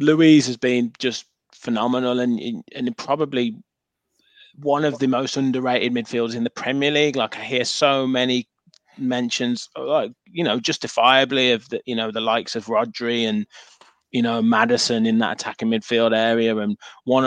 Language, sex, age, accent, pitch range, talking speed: English, male, 20-39, British, 115-145 Hz, 165 wpm